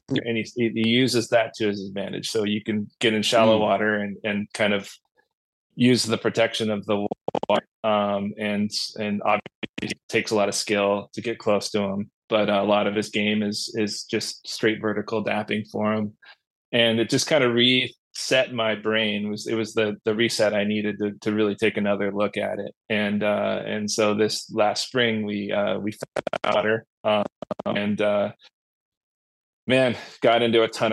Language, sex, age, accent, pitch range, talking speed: English, male, 30-49, American, 105-110 Hz, 185 wpm